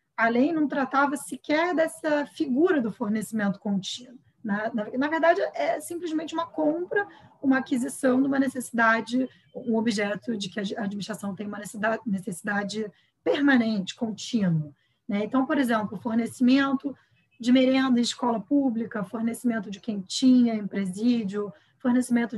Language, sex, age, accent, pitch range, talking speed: Portuguese, female, 20-39, Brazilian, 205-265 Hz, 130 wpm